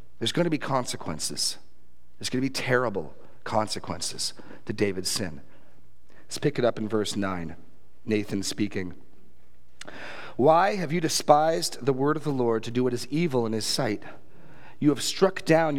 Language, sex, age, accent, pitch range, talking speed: English, male, 40-59, American, 90-135 Hz, 165 wpm